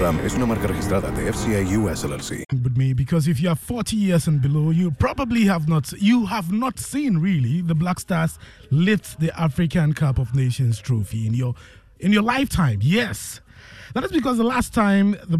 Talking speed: 185 wpm